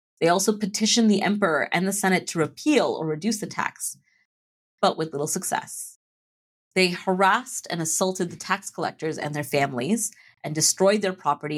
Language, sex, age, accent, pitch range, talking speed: English, female, 30-49, American, 145-190 Hz, 165 wpm